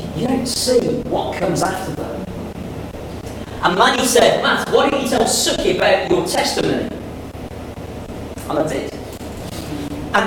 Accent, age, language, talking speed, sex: British, 40-59, English, 135 wpm, male